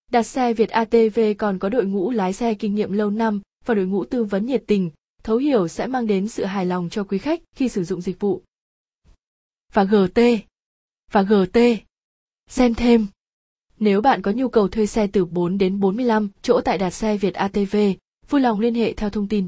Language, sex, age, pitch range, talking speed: Vietnamese, female, 20-39, 195-235 Hz, 205 wpm